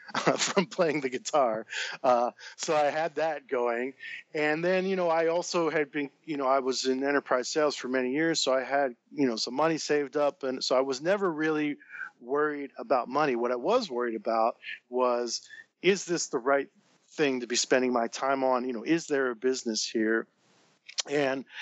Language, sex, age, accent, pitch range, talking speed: English, male, 40-59, American, 130-155 Hz, 195 wpm